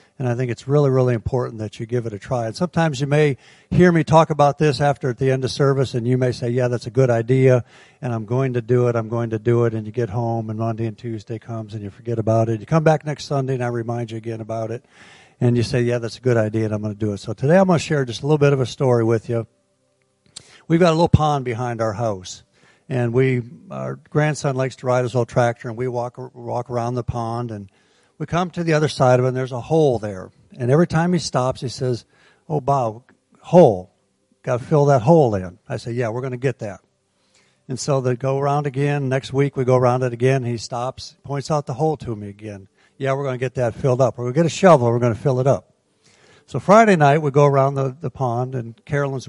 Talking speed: 265 wpm